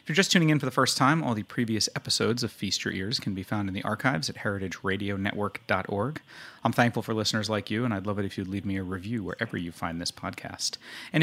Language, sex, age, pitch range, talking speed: English, male, 30-49, 95-120 Hz, 250 wpm